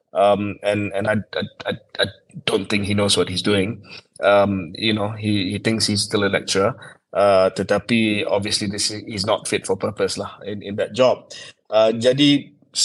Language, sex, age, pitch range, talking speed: Malay, male, 20-39, 105-120 Hz, 185 wpm